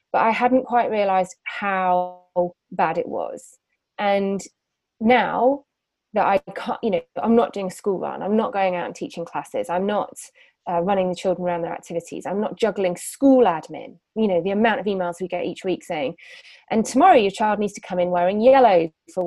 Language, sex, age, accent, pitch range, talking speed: English, female, 20-39, British, 180-255 Hz, 200 wpm